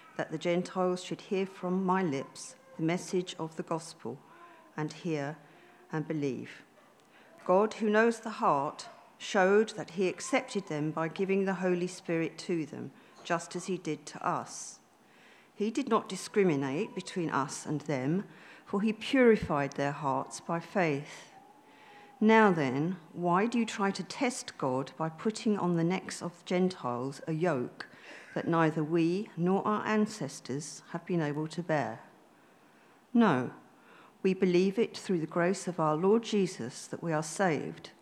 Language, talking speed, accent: English, 155 wpm, British